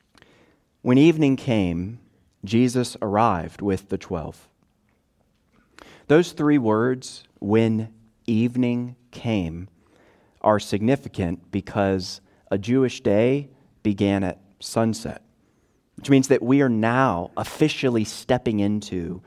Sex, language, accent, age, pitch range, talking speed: male, English, American, 30-49, 105-150 Hz, 100 wpm